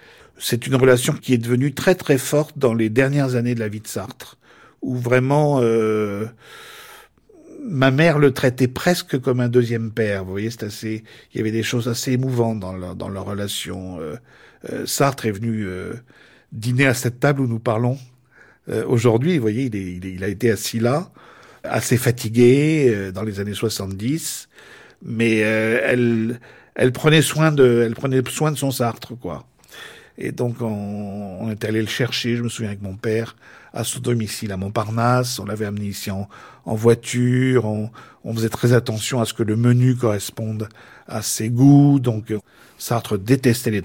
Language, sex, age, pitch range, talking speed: French, male, 50-69, 110-130 Hz, 185 wpm